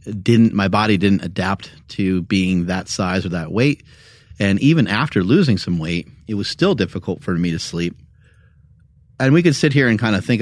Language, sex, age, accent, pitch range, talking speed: English, male, 30-49, American, 90-120 Hz, 200 wpm